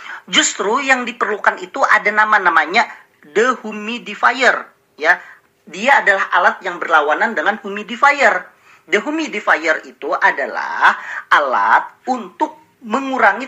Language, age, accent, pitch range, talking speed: Indonesian, 40-59, native, 190-265 Hz, 100 wpm